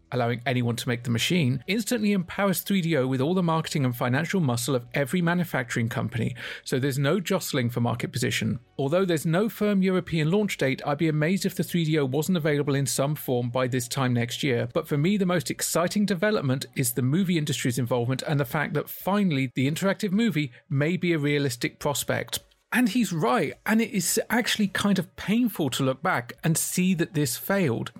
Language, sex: English, male